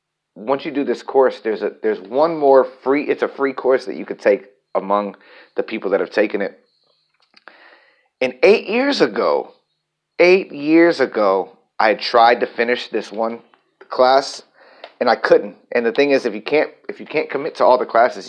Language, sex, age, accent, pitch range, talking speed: English, male, 30-49, American, 115-170 Hz, 195 wpm